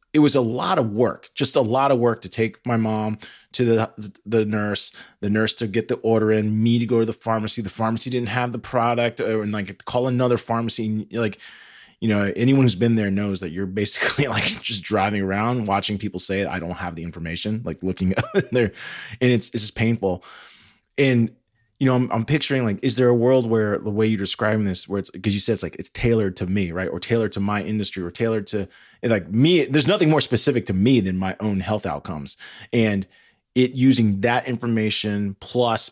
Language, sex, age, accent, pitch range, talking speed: English, male, 20-39, American, 100-120 Hz, 220 wpm